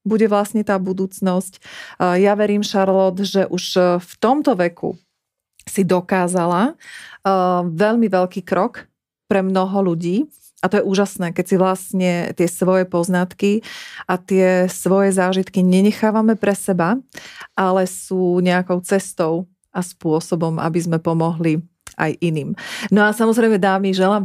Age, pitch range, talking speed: 40-59, 180-205 Hz, 130 wpm